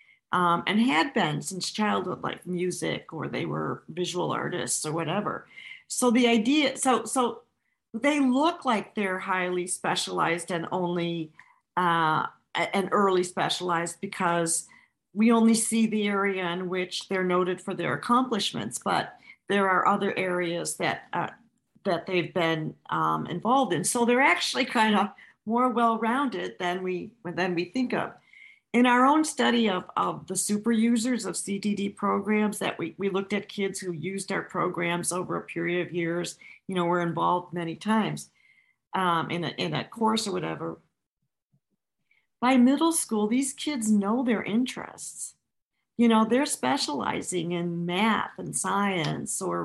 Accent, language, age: American, English, 50-69